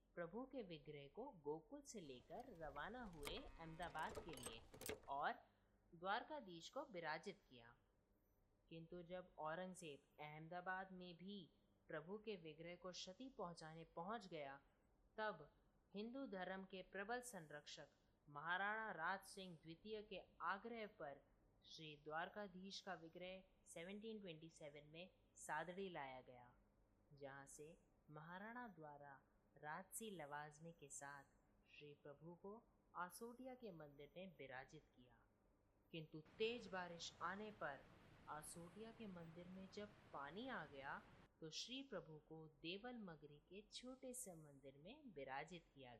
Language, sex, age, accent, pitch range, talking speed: Hindi, female, 30-49, native, 145-200 Hz, 90 wpm